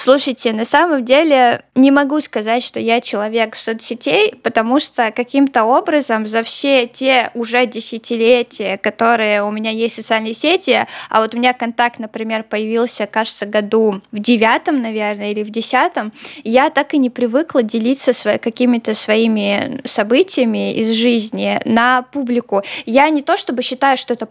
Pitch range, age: 230-275 Hz, 20-39